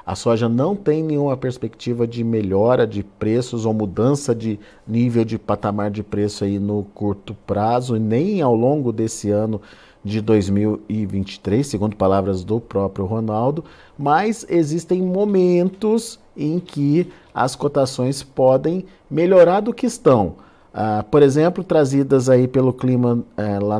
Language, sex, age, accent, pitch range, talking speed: Portuguese, male, 50-69, Brazilian, 110-140 Hz, 130 wpm